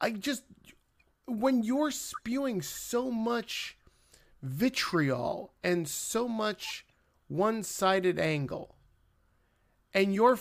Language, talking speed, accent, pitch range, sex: English, 85 wpm, American, 140-230 Hz, male